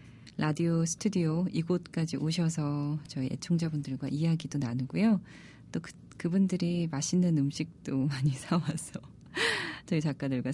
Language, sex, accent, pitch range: Korean, female, native, 145-195 Hz